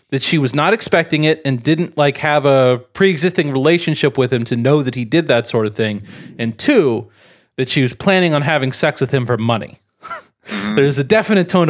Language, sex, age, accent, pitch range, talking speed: English, male, 30-49, American, 135-180 Hz, 210 wpm